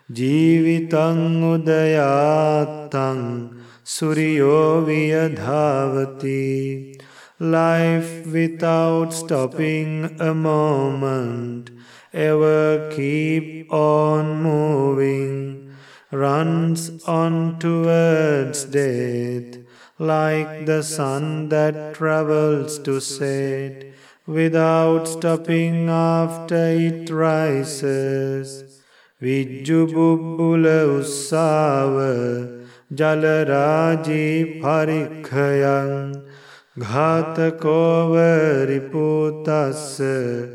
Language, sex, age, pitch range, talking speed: English, male, 30-49, 135-160 Hz, 50 wpm